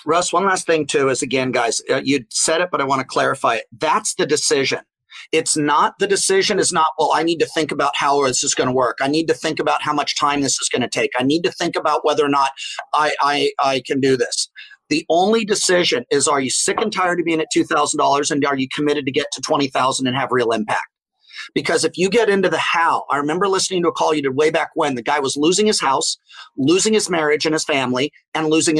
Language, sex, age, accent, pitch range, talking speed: English, male, 40-59, American, 150-220 Hz, 250 wpm